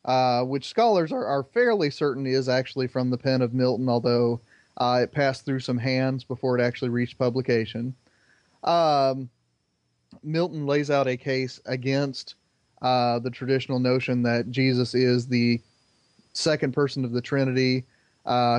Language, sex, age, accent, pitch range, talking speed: English, male, 30-49, American, 120-135 Hz, 150 wpm